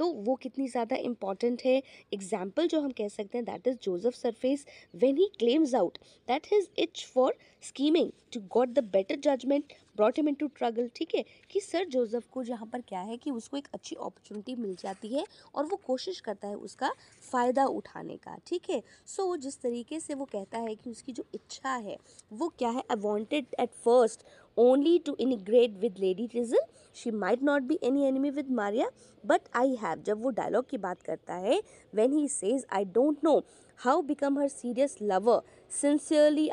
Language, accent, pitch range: English, Indian, 220-290 Hz